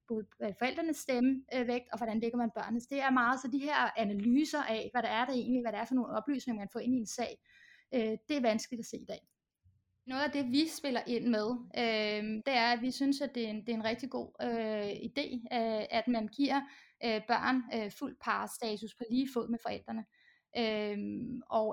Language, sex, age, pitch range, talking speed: Danish, female, 20-39, 225-260 Hz, 195 wpm